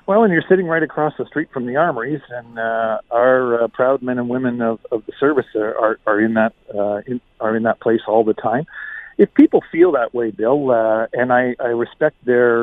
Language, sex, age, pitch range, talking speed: English, male, 50-69, 120-150 Hz, 235 wpm